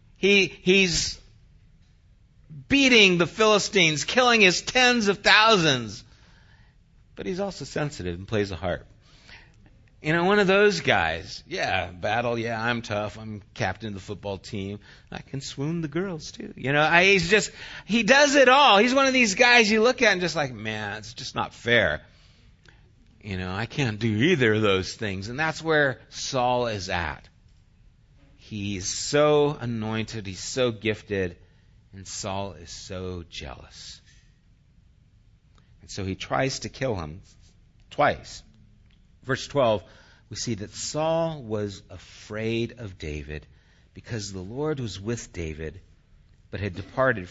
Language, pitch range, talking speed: English, 100-155 Hz, 150 wpm